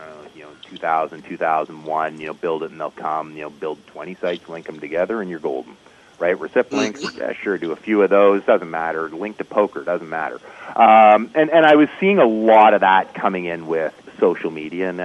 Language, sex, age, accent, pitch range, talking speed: English, male, 40-59, American, 90-130 Hz, 210 wpm